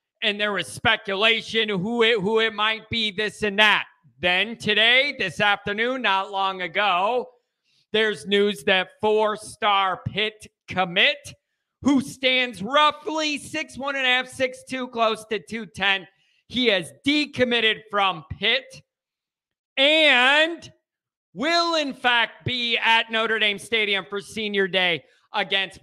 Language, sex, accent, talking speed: English, male, American, 120 wpm